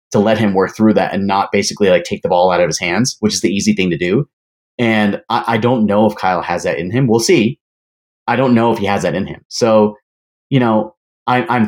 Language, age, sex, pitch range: English, 30-49, male, 100-125 Hz